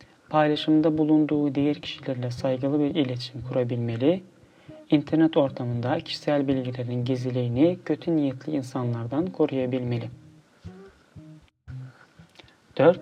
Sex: male